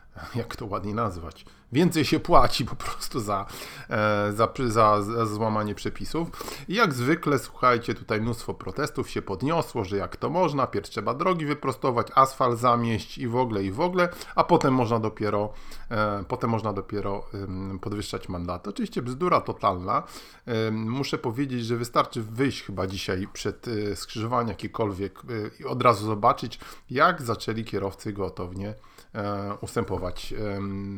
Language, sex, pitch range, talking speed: Polish, male, 100-120 Hz, 140 wpm